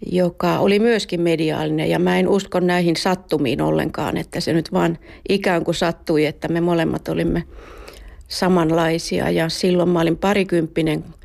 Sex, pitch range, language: female, 160-180 Hz, Finnish